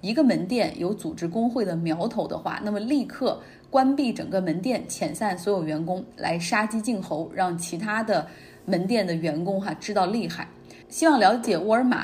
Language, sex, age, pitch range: Chinese, female, 20-39, 180-235 Hz